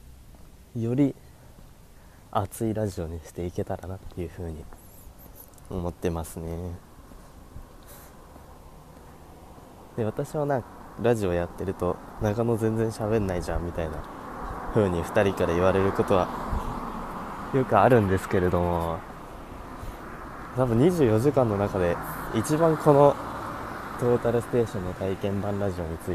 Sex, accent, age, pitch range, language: male, native, 20-39, 85-110 Hz, Japanese